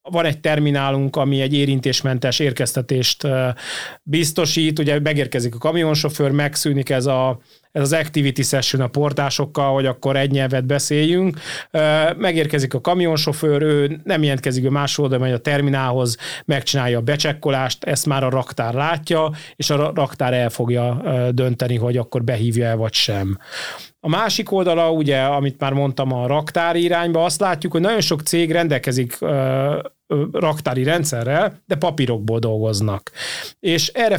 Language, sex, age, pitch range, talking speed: Hungarian, male, 30-49, 130-160 Hz, 145 wpm